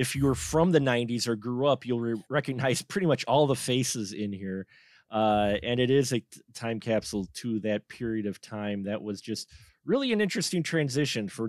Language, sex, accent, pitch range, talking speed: English, male, American, 110-145 Hz, 200 wpm